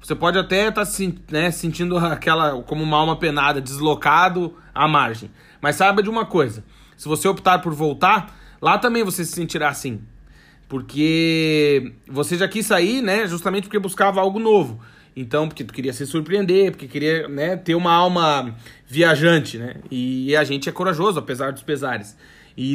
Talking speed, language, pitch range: 165 wpm, Portuguese, 140-185 Hz